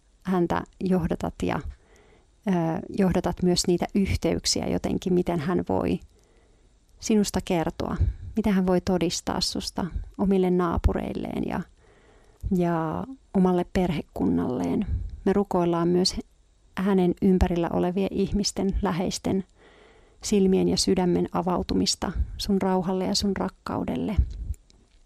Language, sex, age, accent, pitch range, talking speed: Finnish, female, 40-59, native, 170-195 Hz, 100 wpm